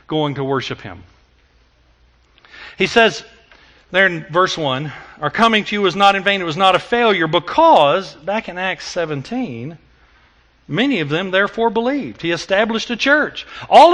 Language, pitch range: English, 160-265 Hz